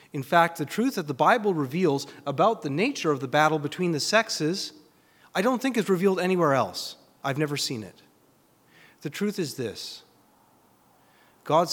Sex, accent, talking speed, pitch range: male, American, 170 wpm, 125-170 Hz